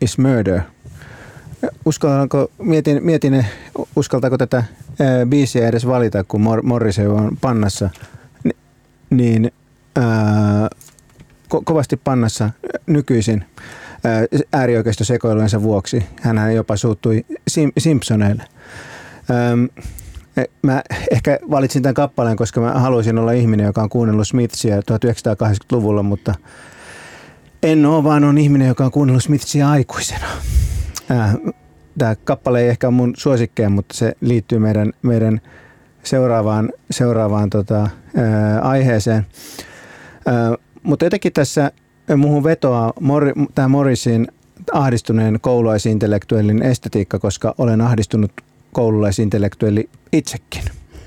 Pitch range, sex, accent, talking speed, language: 110-135 Hz, male, native, 100 wpm, Finnish